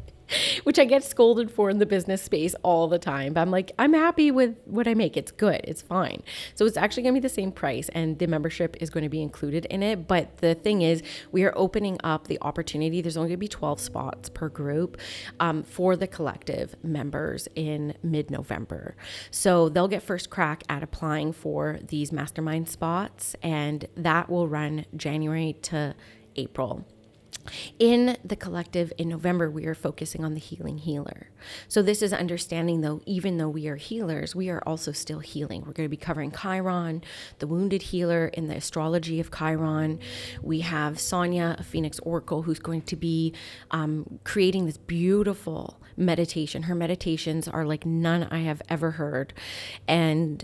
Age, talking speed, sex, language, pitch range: 30-49, 185 wpm, female, English, 155-180 Hz